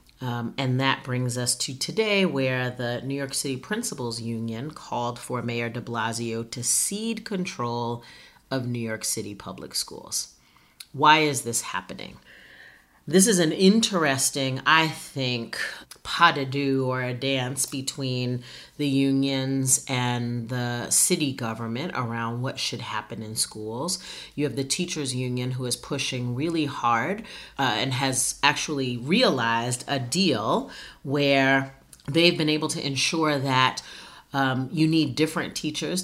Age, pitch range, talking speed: 40-59, 120-150 Hz, 140 wpm